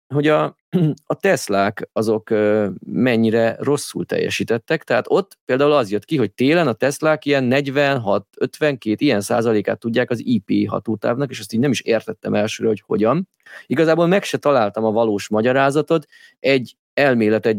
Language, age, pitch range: Hungarian, 30-49, 105-140 Hz